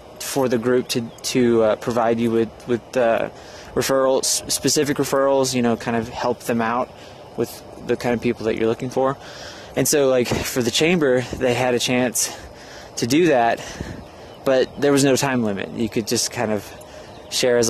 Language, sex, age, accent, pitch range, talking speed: English, male, 20-39, American, 115-135 Hz, 190 wpm